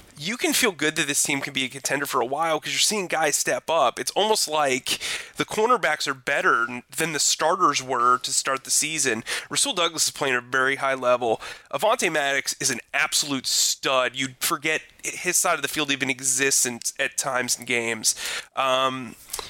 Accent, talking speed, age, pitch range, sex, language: American, 200 wpm, 30-49, 130-170 Hz, male, English